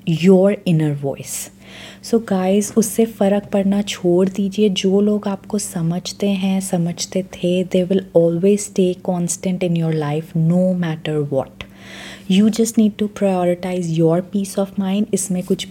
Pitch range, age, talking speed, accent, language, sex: 180-205 Hz, 30-49, 145 wpm, native, Hindi, female